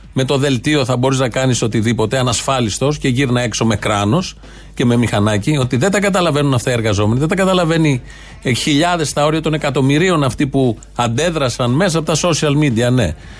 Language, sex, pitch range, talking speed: Greek, male, 120-165 Hz, 190 wpm